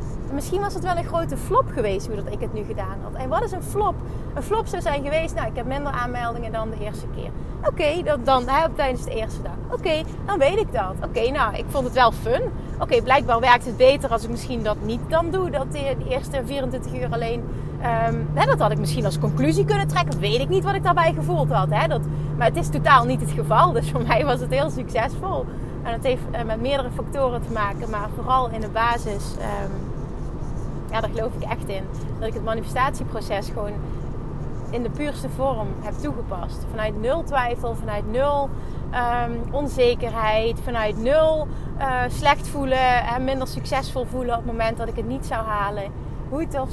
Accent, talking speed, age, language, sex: Dutch, 215 wpm, 30-49, Dutch, female